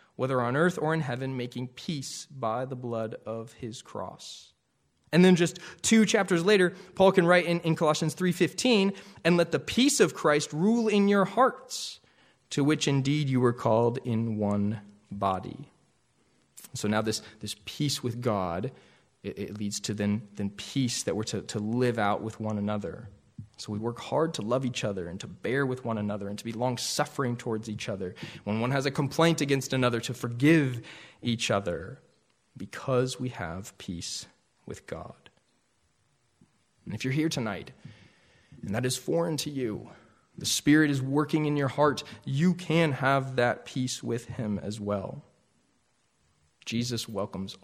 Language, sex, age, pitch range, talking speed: English, male, 20-39, 110-155 Hz, 170 wpm